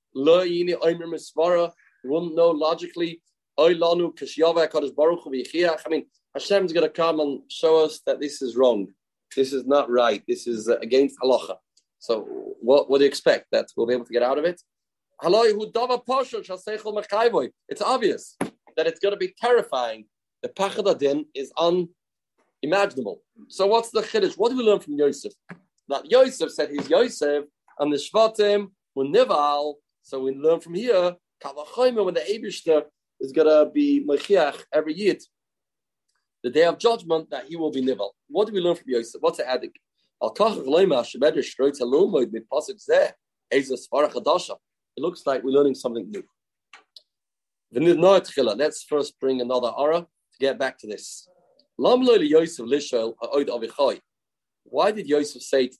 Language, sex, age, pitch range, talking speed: English, male, 30-49, 140-200 Hz, 160 wpm